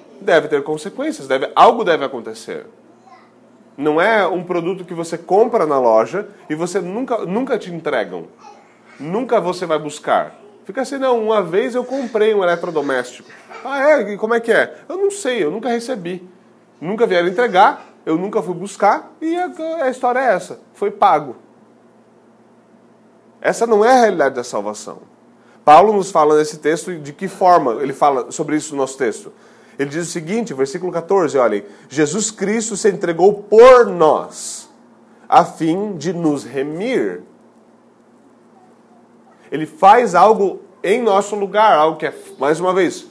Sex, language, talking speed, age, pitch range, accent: male, Portuguese, 160 wpm, 30-49, 160-230 Hz, Brazilian